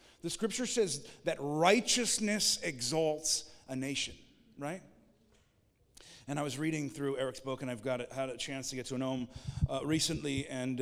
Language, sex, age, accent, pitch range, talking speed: English, male, 40-59, American, 125-155 Hz, 170 wpm